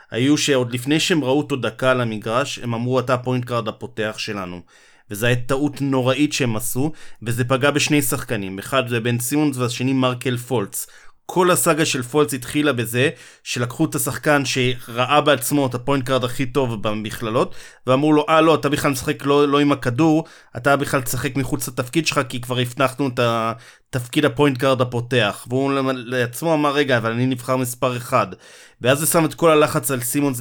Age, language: 30-49, Hebrew